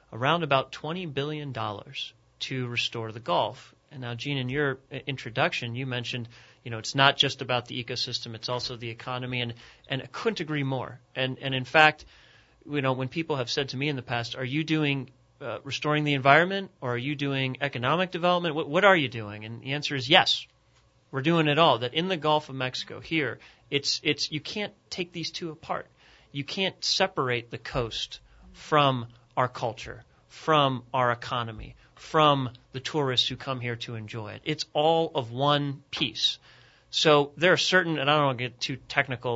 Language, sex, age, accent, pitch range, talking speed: English, male, 30-49, American, 120-150 Hz, 195 wpm